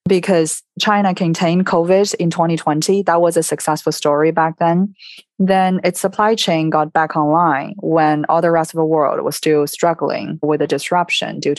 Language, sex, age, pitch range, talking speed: English, female, 20-39, 155-190 Hz, 175 wpm